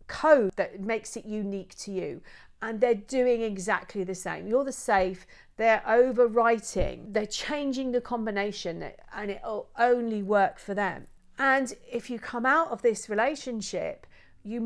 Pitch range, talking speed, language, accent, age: 190-235 Hz, 155 wpm, English, British, 40-59